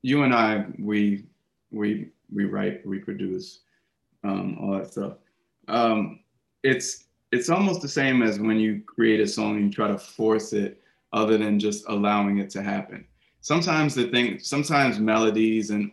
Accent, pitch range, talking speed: American, 105-120 Hz, 165 wpm